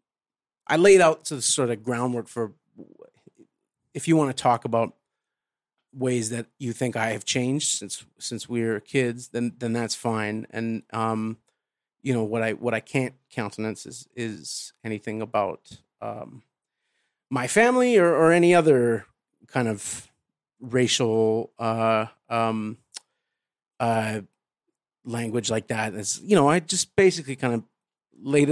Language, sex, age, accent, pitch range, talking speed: English, male, 30-49, American, 115-130 Hz, 145 wpm